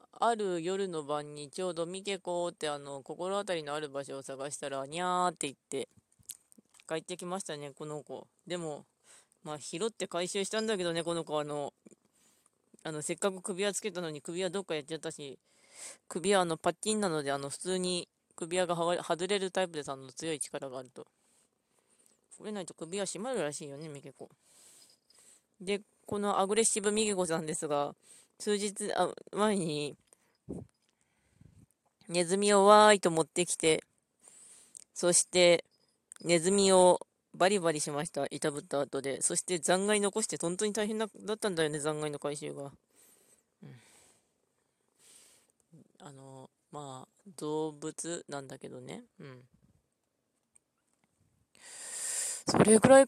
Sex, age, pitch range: female, 20-39, 150-195 Hz